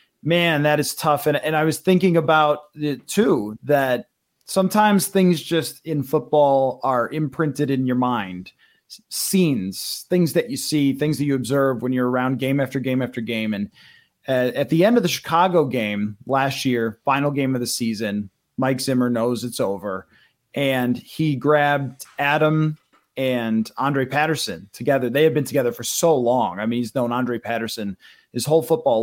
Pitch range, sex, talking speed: 120-150 Hz, male, 175 wpm